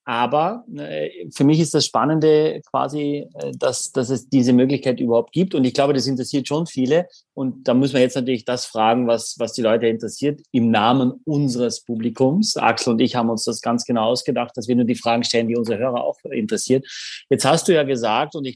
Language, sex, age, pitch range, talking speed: German, male, 30-49, 115-140 Hz, 210 wpm